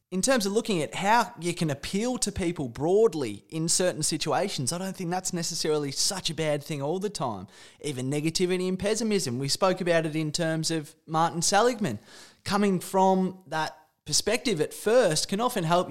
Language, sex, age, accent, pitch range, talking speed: English, male, 20-39, Australian, 155-205 Hz, 185 wpm